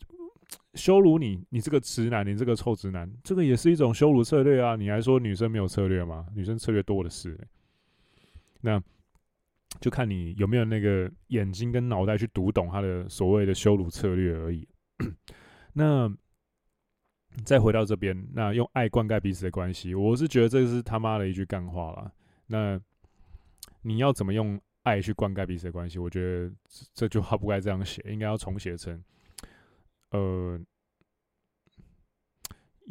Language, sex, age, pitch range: Chinese, male, 20-39, 95-120 Hz